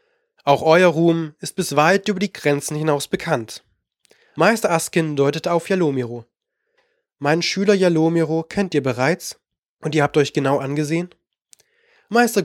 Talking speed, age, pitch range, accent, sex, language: 140 wpm, 20-39, 140-180 Hz, German, male, German